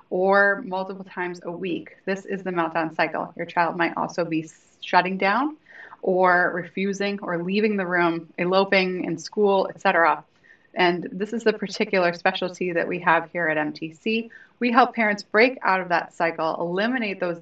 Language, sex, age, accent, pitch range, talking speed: English, female, 30-49, American, 170-215 Hz, 170 wpm